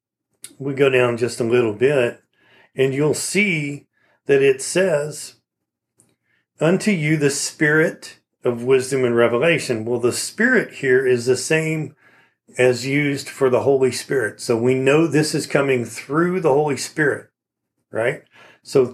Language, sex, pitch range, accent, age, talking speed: English, male, 125-150 Hz, American, 40-59, 145 wpm